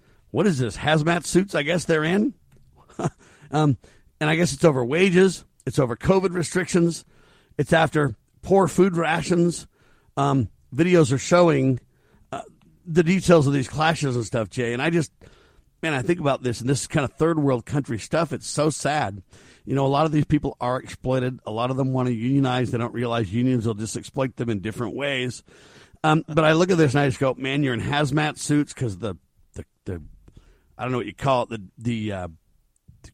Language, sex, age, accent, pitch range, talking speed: English, male, 50-69, American, 120-160 Hz, 210 wpm